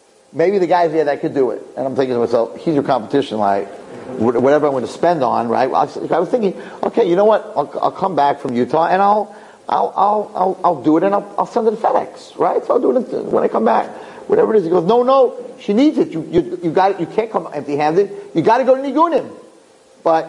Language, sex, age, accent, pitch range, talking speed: English, male, 40-59, American, 145-230 Hz, 260 wpm